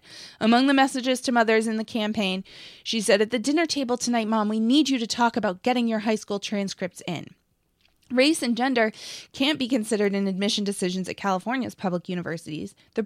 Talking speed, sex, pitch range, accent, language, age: 195 wpm, female, 190-235 Hz, American, English, 20-39